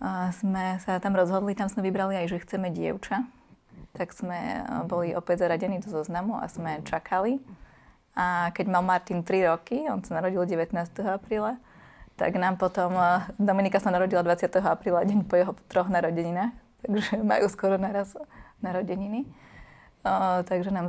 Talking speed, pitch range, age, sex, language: 150 wpm, 175-200 Hz, 20-39, female, Slovak